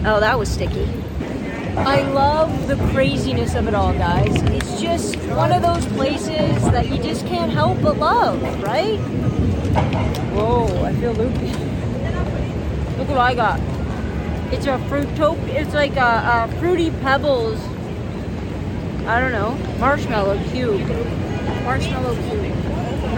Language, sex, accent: English, female, American